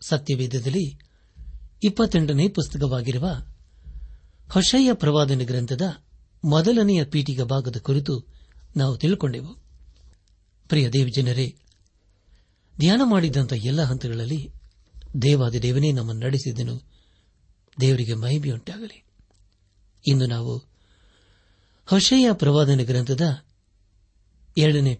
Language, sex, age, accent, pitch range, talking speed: Kannada, male, 60-79, native, 100-150 Hz, 70 wpm